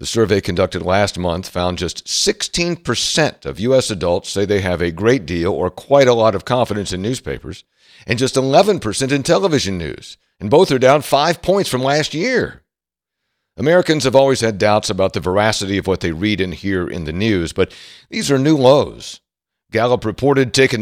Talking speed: 185 wpm